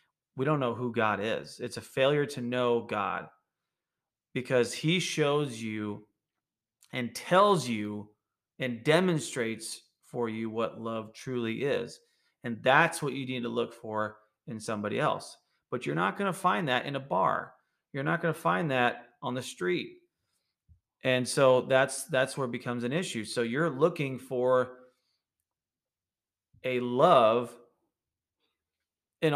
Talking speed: 150 wpm